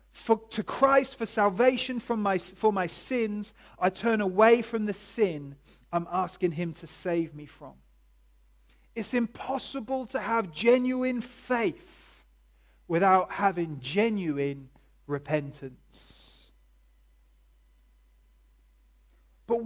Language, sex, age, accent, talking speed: English, male, 40-59, British, 105 wpm